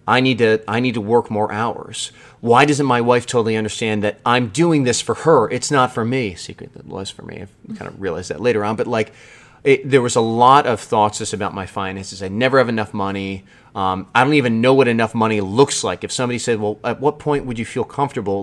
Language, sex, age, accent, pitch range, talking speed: English, male, 30-49, American, 100-125 Hz, 250 wpm